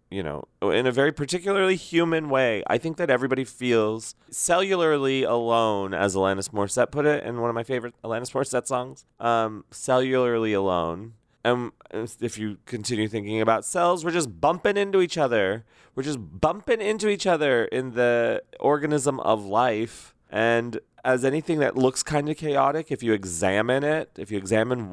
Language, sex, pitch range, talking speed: English, male, 110-140 Hz, 170 wpm